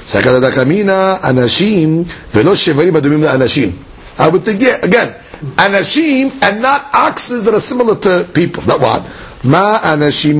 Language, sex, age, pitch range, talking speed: English, male, 50-69, 155-255 Hz, 105 wpm